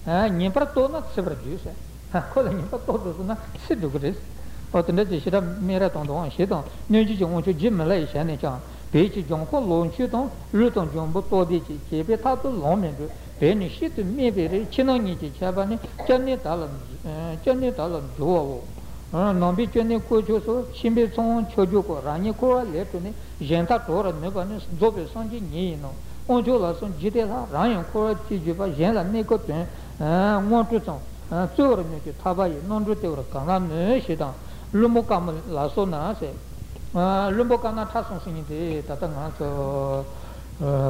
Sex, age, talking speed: male, 60-79, 120 wpm